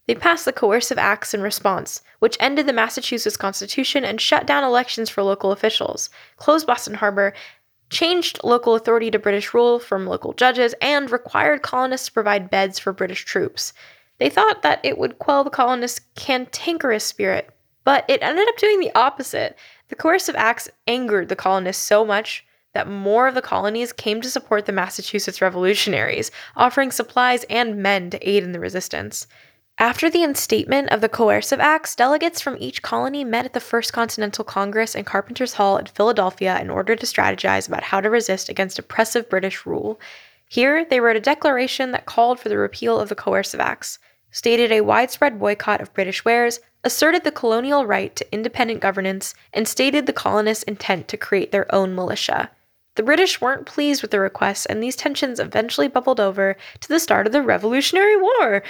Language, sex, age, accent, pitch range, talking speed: English, female, 10-29, American, 200-265 Hz, 180 wpm